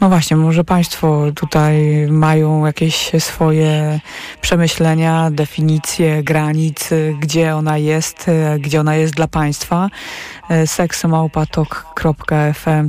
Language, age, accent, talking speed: Polish, 20-39, native, 95 wpm